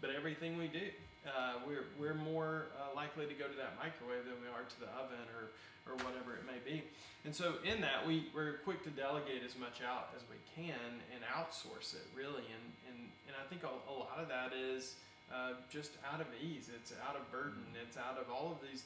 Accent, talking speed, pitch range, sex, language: American, 225 wpm, 125-150 Hz, male, English